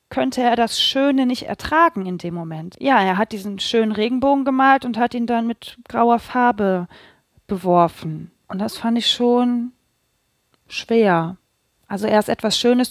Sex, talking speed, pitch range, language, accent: female, 160 wpm, 205-255 Hz, German, German